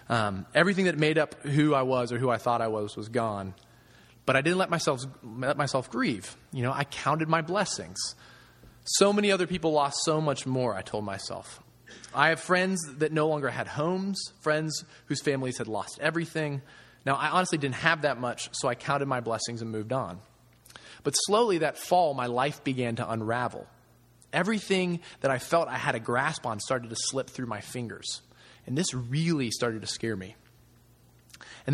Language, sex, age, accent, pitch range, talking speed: English, male, 20-39, American, 120-155 Hz, 195 wpm